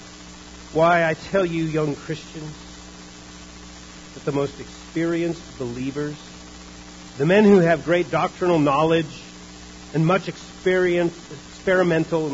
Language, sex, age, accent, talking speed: English, male, 40-59, American, 100 wpm